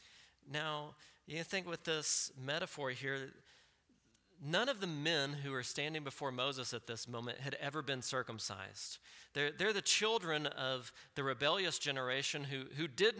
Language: English